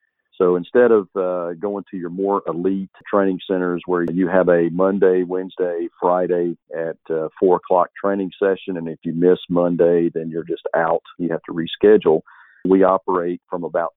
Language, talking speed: English, 175 wpm